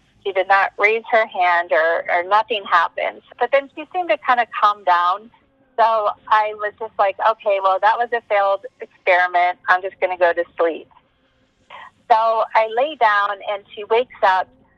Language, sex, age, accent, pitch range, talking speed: English, female, 30-49, American, 185-230 Hz, 185 wpm